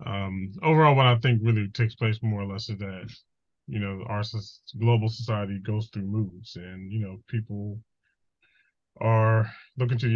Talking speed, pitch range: 170 wpm, 95-115 Hz